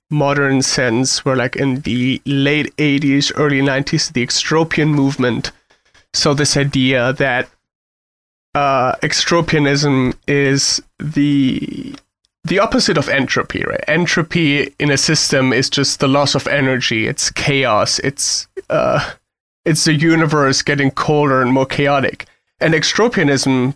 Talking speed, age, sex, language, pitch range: 125 wpm, 30-49, male, English, 135-155 Hz